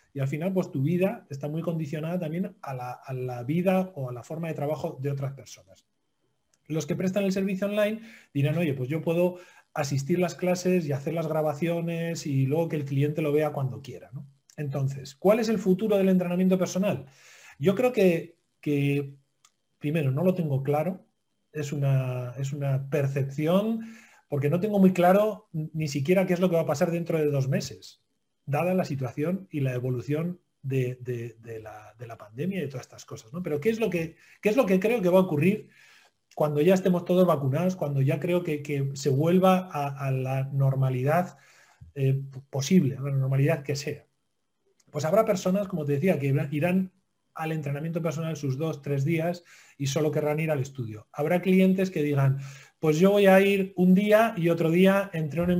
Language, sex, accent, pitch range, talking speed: Spanish, male, Spanish, 140-180 Hz, 195 wpm